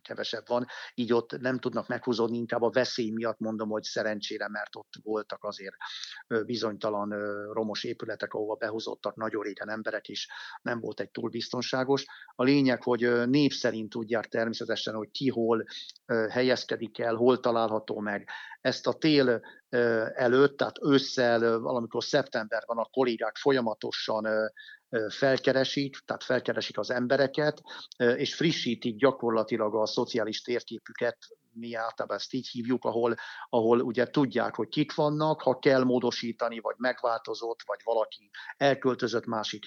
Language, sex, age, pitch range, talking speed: Hungarian, male, 50-69, 115-130 Hz, 135 wpm